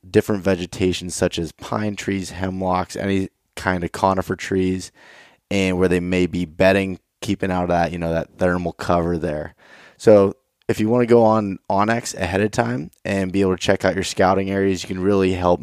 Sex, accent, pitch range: male, American, 90-110 Hz